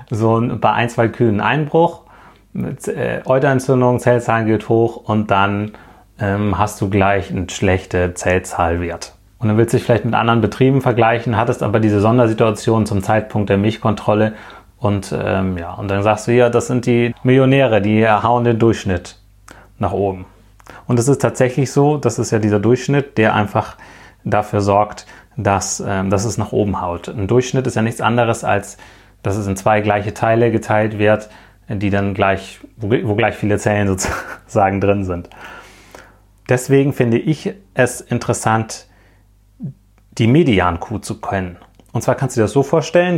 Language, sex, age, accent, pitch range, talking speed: German, male, 30-49, German, 100-125 Hz, 170 wpm